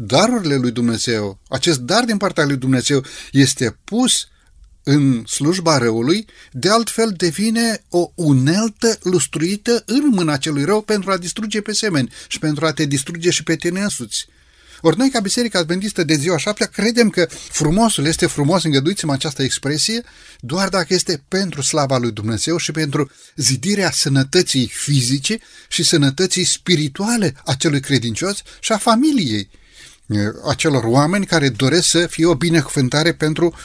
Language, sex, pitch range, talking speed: Romanian, male, 135-195 Hz, 150 wpm